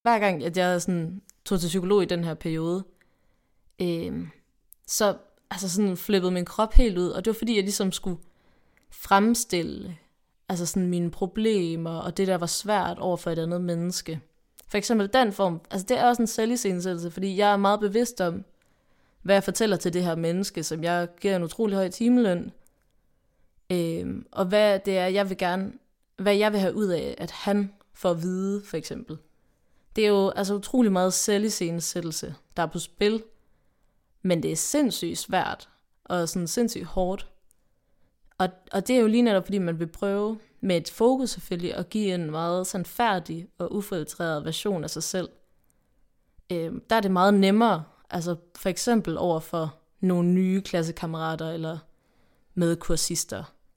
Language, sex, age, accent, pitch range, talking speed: Danish, female, 20-39, native, 170-205 Hz, 175 wpm